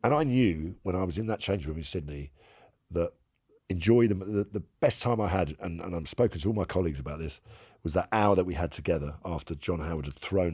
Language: English